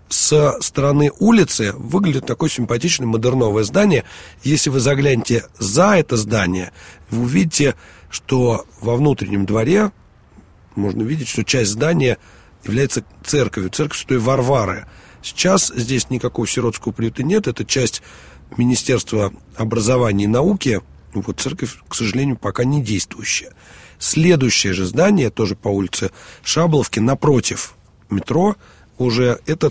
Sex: male